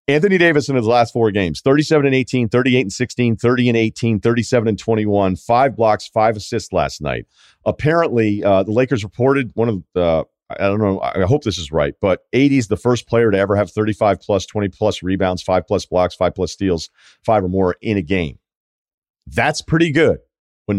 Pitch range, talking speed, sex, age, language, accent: 100-125 Hz, 210 wpm, male, 40-59, English, American